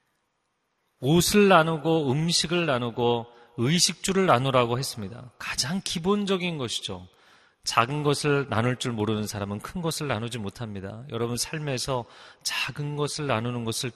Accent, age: native, 30-49